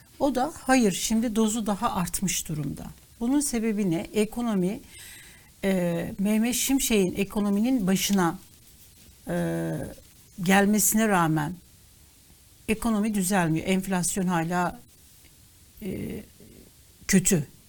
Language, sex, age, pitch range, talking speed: Turkish, female, 60-79, 175-230 Hz, 90 wpm